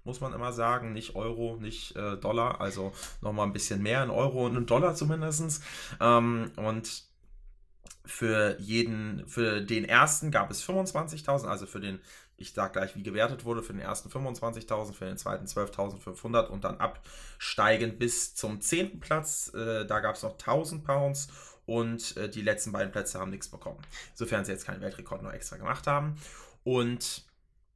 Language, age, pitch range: German, 20-39, 105-130 Hz